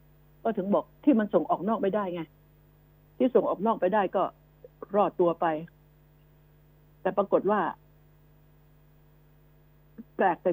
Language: Thai